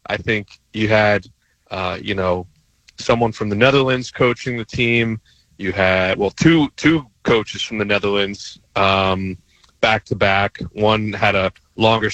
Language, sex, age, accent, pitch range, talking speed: English, male, 30-49, American, 110-140 Hz, 145 wpm